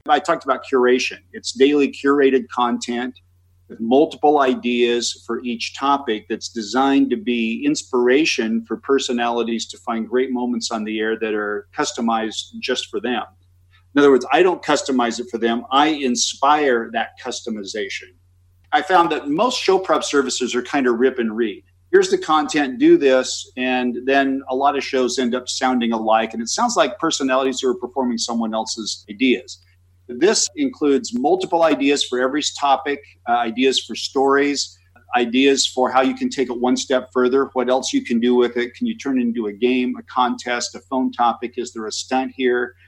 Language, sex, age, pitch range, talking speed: English, male, 50-69, 115-135 Hz, 185 wpm